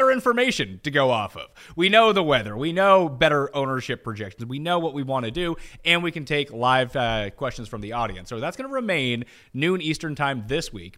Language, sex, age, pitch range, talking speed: English, male, 30-49, 110-160 Hz, 225 wpm